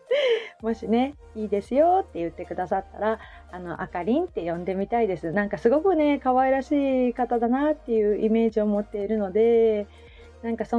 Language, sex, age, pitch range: Japanese, female, 30-49, 210-270 Hz